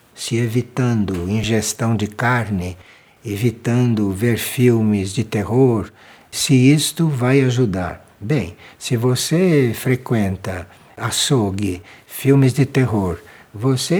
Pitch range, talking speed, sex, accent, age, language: 110-155 Hz, 100 wpm, male, Brazilian, 60-79, Portuguese